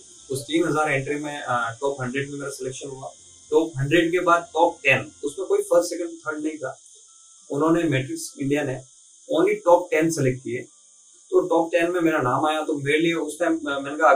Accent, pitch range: native, 135-175 Hz